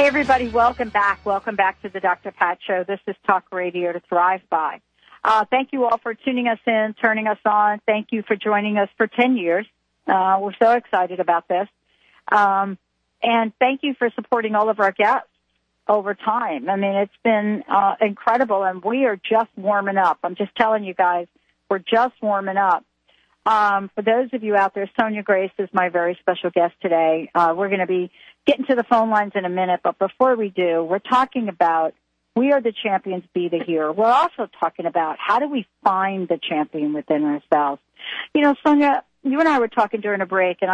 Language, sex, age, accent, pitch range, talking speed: English, female, 50-69, American, 180-230 Hz, 210 wpm